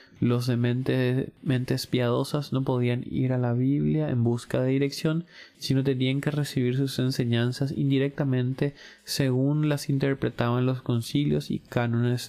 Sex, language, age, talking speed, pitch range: male, Spanish, 20-39, 135 wpm, 115-135 Hz